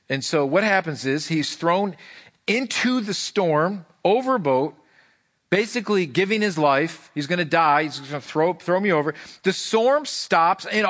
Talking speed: 165 wpm